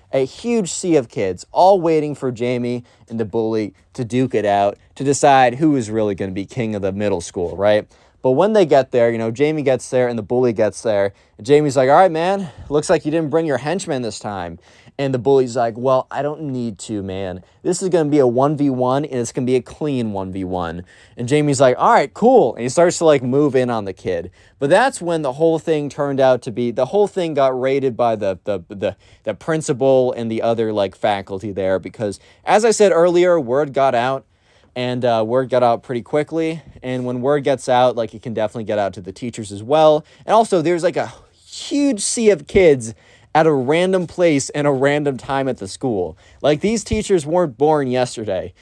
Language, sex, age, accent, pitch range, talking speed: English, male, 20-39, American, 110-155 Hz, 230 wpm